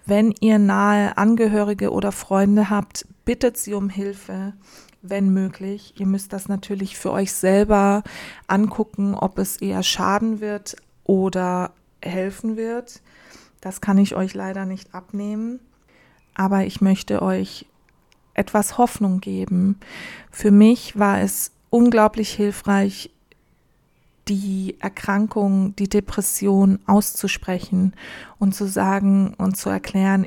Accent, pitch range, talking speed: German, 190-210 Hz, 120 wpm